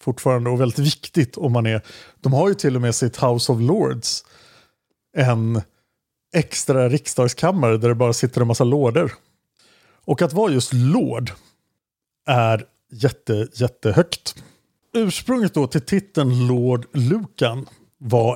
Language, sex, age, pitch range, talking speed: Swedish, male, 50-69, 115-145 Hz, 135 wpm